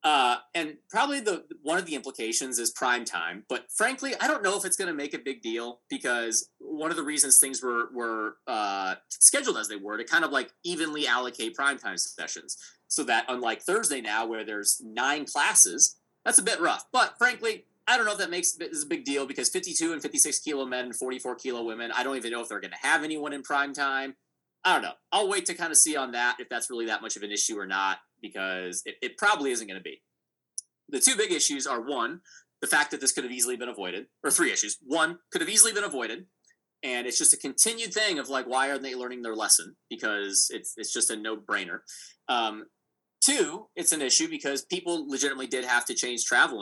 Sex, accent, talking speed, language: male, American, 230 wpm, English